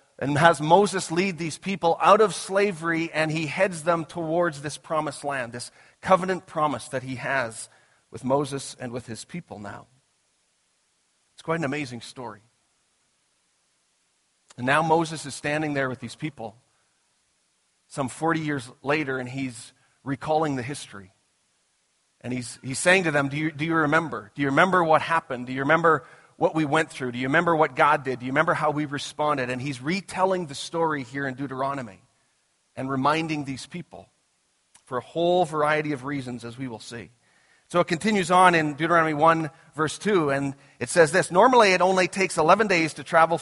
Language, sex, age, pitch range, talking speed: English, male, 40-59, 130-165 Hz, 180 wpm